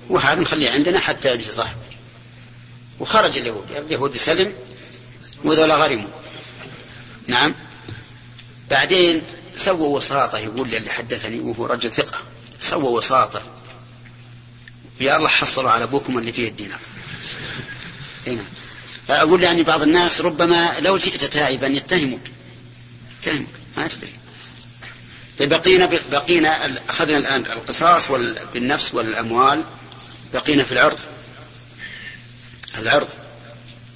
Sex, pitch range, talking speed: male, 120-140 Hz, 100 wpm